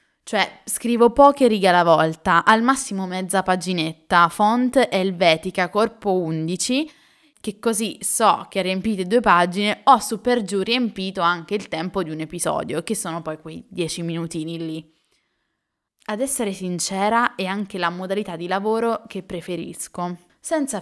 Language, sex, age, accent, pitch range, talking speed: Italian, female, 20-39, native, 175-230 Hz, 140 wpm